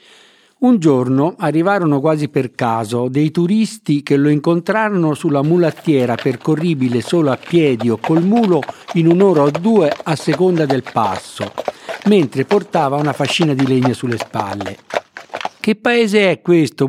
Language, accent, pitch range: Italian, native, 130-185 Hz